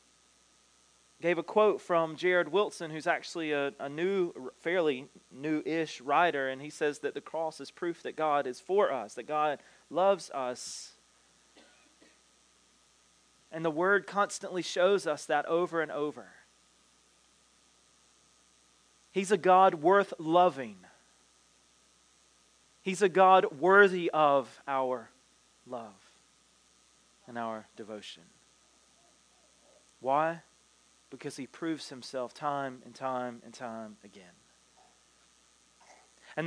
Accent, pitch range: American, 115-185 Hz